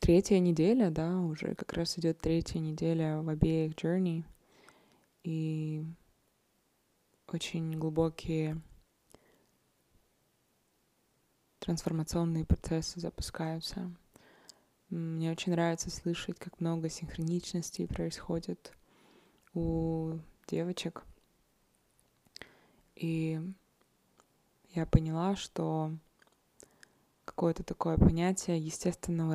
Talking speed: 75 wpm